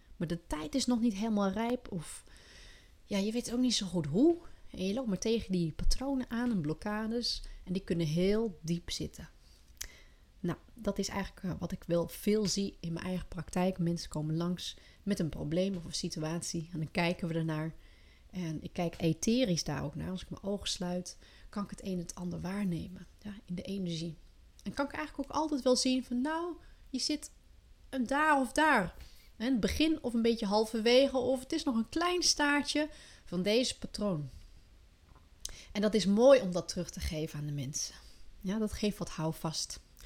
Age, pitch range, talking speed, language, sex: 30-49, 170-240 Hz, 200 wpm, Dutch, female